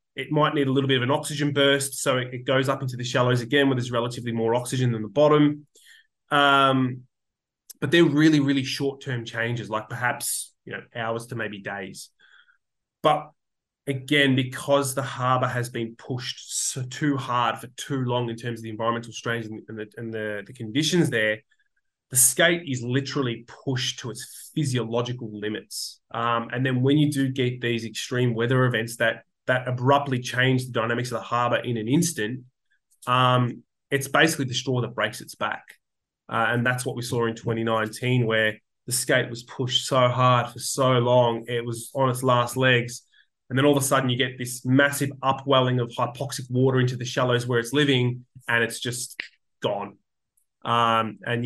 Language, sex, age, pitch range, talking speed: English, male, 20-39, 120-135 Hz, 185 wpm